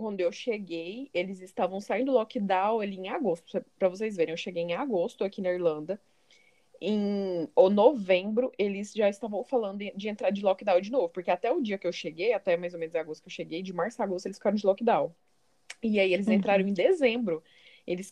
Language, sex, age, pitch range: Portuguese, female, 20-39, 175-240 Hz